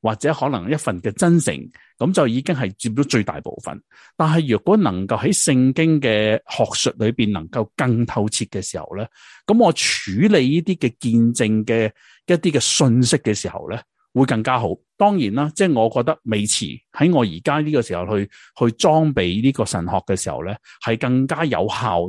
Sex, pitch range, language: male, 110-150 Hz, Chinese